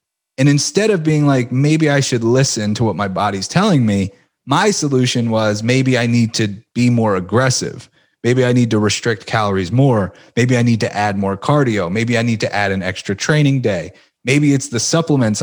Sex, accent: male, American